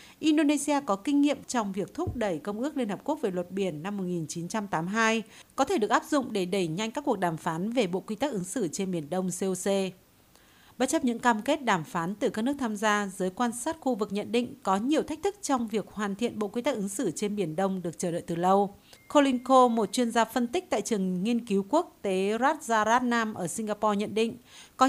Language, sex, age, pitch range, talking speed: Vietnamese, female, 50-69, 195-255 Hz, 240 wpm